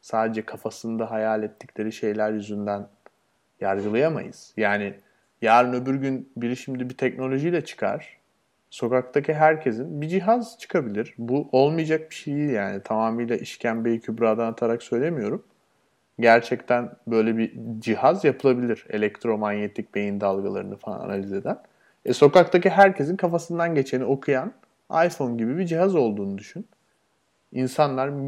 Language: Turkish